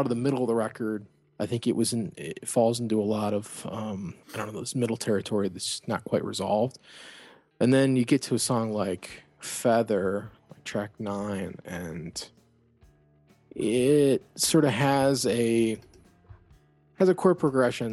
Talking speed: 170 wpm